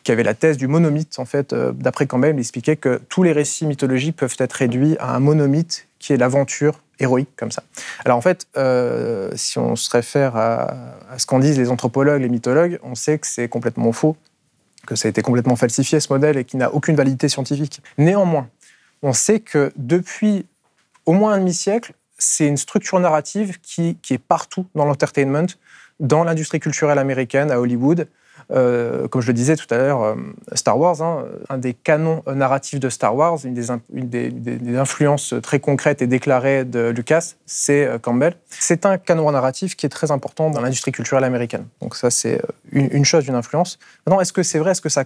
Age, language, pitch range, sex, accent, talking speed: 20-39, French, 130-160 Hz, male, French, 200 wpm